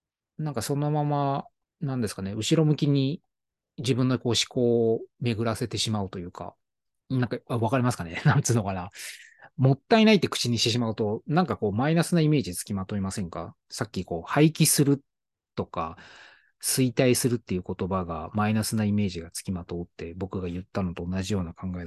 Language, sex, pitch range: Japanese, male, 95-140 Hz